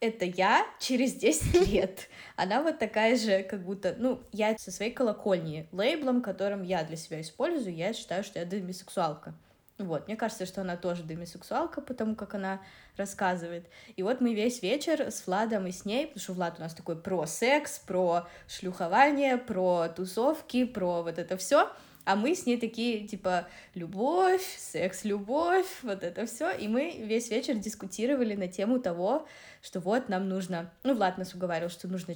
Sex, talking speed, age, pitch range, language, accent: female, 175 wpm, 20-39, 180-240 Hz, Russian, native